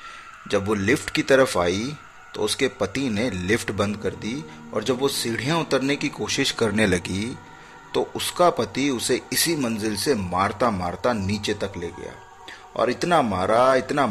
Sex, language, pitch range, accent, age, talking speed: male, Hindi, 90-125 Hz, native, 30-49, 170 wpm